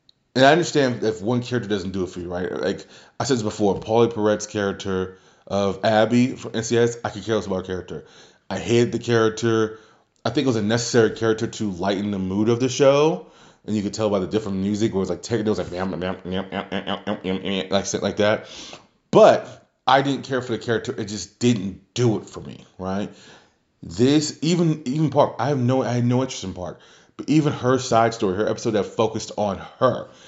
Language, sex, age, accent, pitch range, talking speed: English, male, 30-49, American, 100-125 Hz, 230 wpm